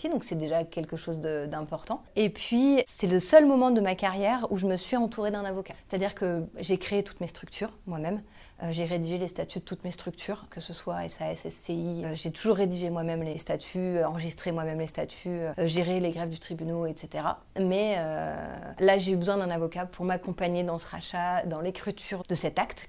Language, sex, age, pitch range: French, female, 30-49, 165-195 Hz